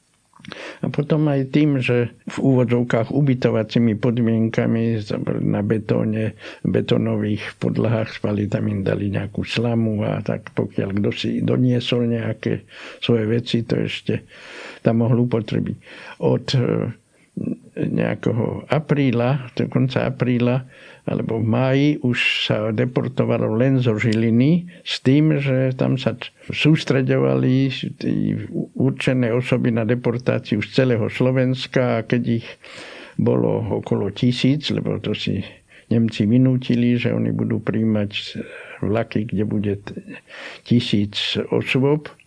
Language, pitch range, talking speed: Slovak, 110-130 Hz, 115 wpm